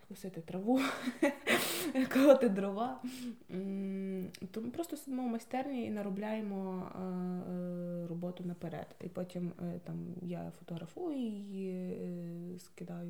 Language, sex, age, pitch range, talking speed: Ukrainian, female, 20-39, 180-235 Hz, 90 wpm